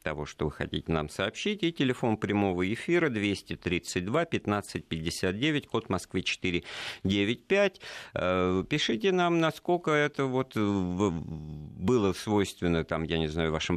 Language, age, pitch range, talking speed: Russian, 50-69, 80-100 Hz, 120 wpm